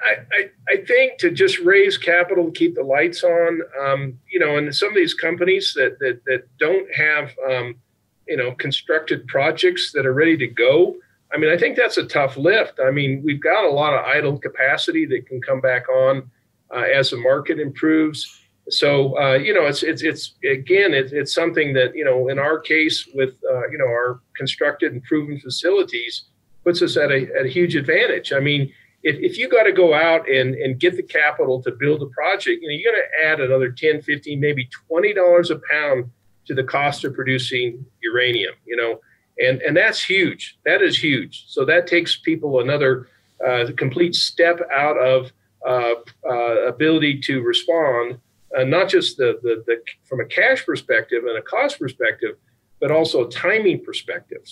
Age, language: 50-69, English